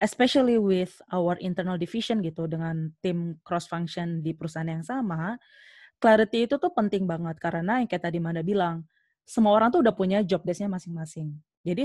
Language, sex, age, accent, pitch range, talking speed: Indonesian, female, 20-39, native, 175-220 Hz, 165 wpm